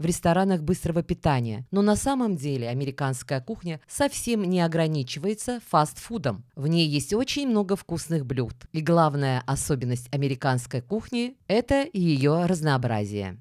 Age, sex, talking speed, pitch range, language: 20-39, female, 135 wpm, 140-205 Hz, Russian